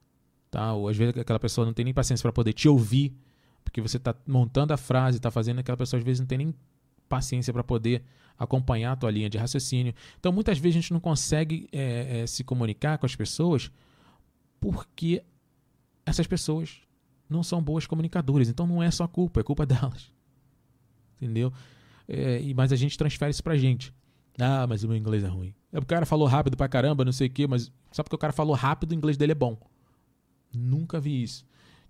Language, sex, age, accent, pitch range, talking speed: Portuguese, male, 20-39, Brazilian, 115-140 Hz, 205 wpm